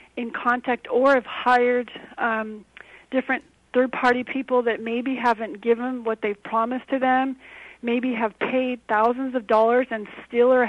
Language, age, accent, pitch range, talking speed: English, 40-59, American, 225-250 Hz, 150 wpm